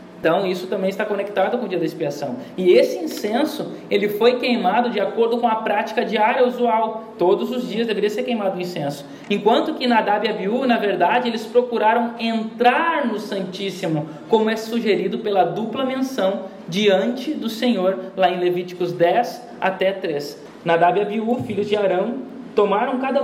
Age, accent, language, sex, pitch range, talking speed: 20-39, Brazilian, Portuguese, male, 185-235 Hz, 170 wpm